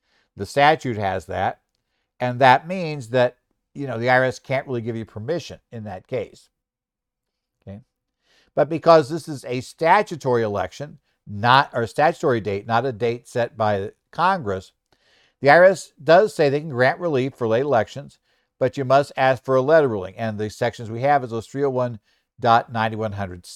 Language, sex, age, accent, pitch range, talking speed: English, male, 60-79, American, 115-140 Hz, 165 wpm